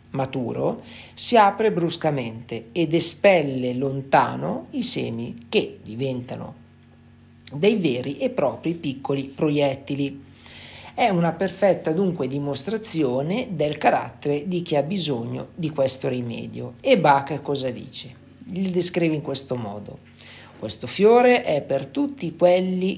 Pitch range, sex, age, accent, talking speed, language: 135-190 Hz, male, 50-69, native, 120 wpm, Italian